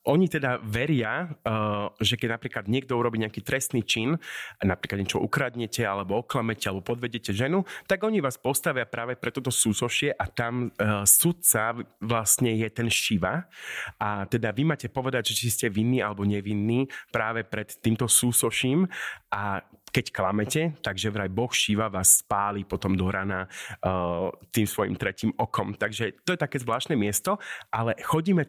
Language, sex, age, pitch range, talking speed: Slovak, male, 30-49, 105-130 Hz, 155 wpm